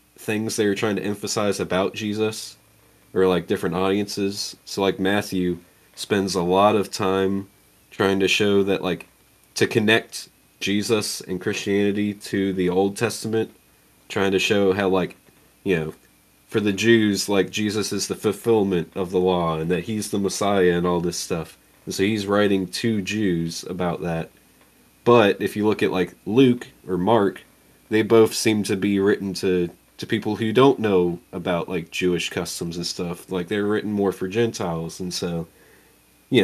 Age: 20-39